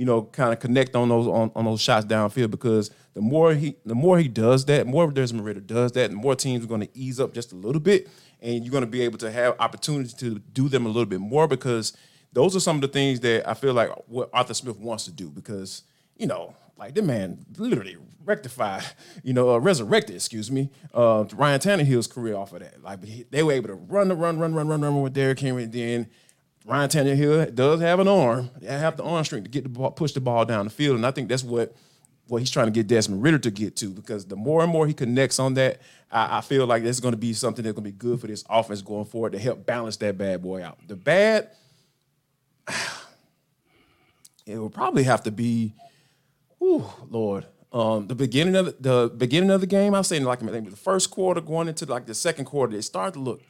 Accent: American